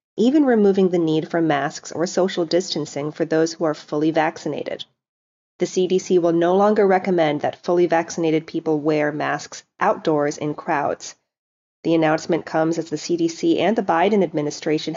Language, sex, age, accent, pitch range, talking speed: English, female, 30-49, American, 160-185 Hz, 160 wpm